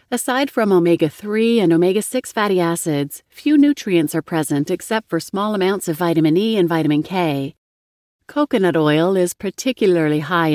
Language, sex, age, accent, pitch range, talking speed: English, female, 30-49, American, 155-215 Hz, 150 wpm